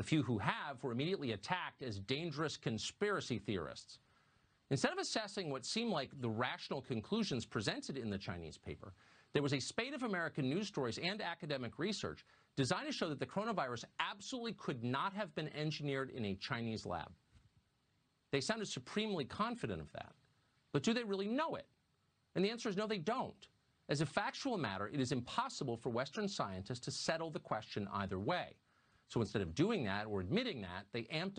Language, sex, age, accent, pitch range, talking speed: English, male, 50-69, American, 110-185 Hz, 185 wpm